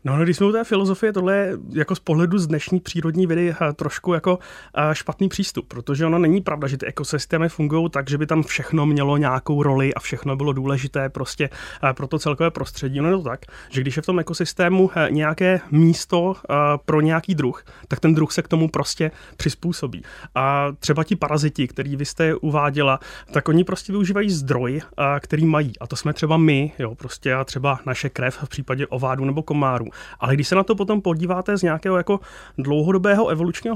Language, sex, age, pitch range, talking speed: Czech, male, 30-49, 140-170 Hz, 195 wpm